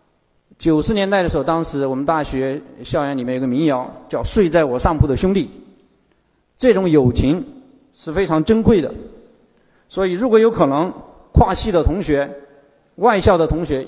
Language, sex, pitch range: Chinese, male, 140-190 Hz